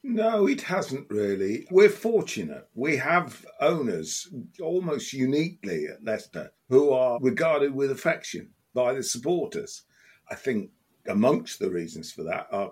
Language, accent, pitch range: English, British, 120-170 Hz